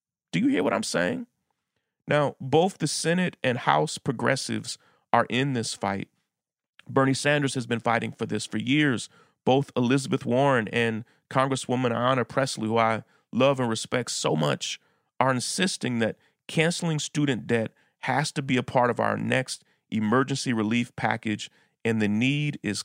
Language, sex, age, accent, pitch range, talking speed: English, male, 40-59, American, 110-135 Hz, 160 wpm